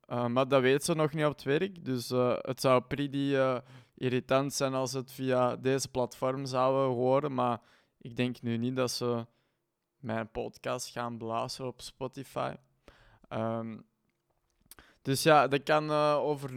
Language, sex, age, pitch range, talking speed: Dutch, male, 20-39, 120-135 Hz, 165 wpm